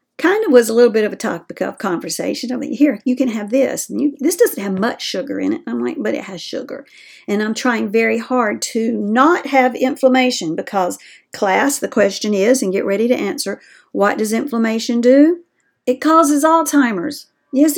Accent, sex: American, female